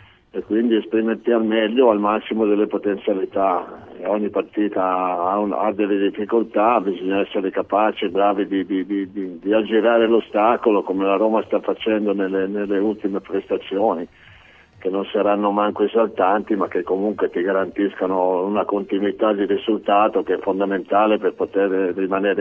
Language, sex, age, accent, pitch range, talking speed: Italian, male, 50-69, native, 95-110 Hz, 155 wpm